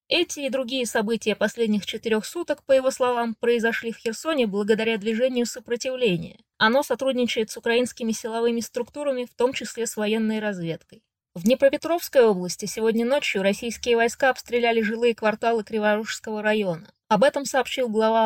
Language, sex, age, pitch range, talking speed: Russian, female, 20-39, 210-245 Hz, 145 wpm